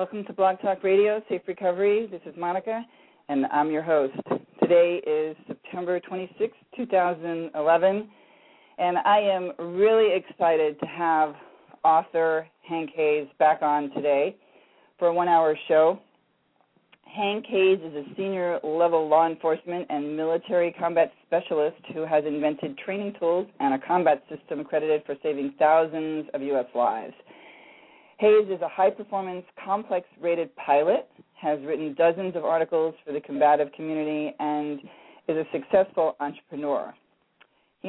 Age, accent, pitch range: 40-59, American, 155-195 Hz